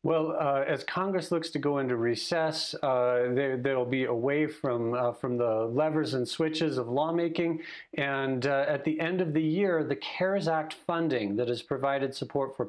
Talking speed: 190 wpm